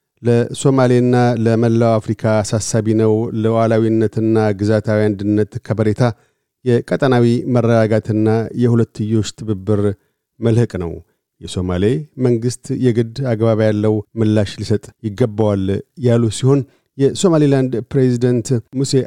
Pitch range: 110-135 Hz